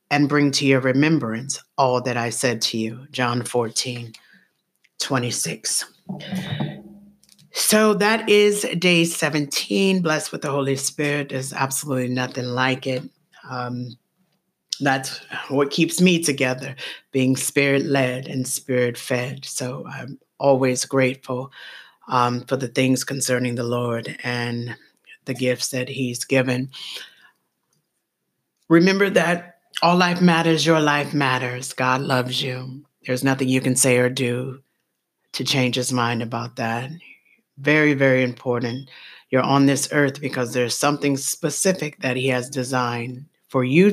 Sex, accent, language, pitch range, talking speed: female, American, English, 125-150 Hz, 135 wpm